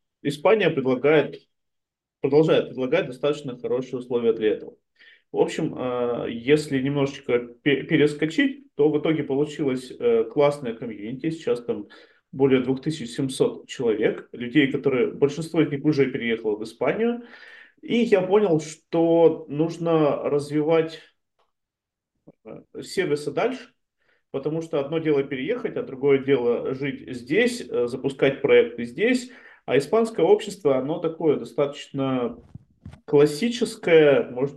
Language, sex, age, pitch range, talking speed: Russian, male, 30-49, 135-165 Hz, 110 wpm